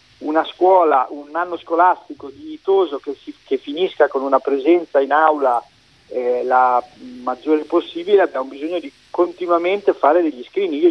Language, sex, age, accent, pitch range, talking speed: Italian, male, 40-59, native, 135-175 Hz, 150 wpm